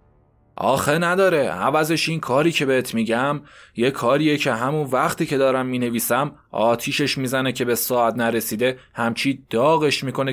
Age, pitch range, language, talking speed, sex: 20-39, 115-145 Hz, Persian, 145 wpm, male